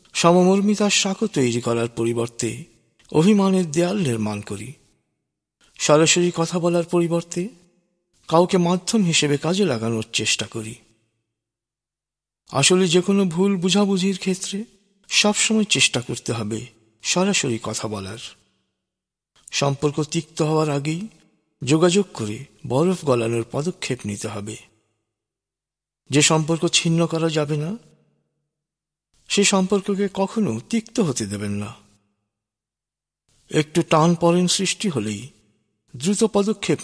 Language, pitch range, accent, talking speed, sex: Bengali, 115-185 Hz, native, 100 wpm, male